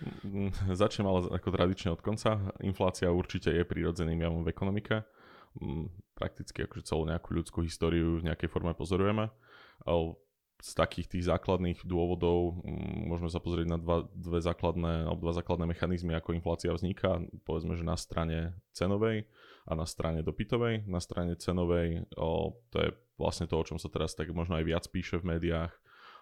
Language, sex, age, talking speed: Slovak, male, 20-39, 155 wpm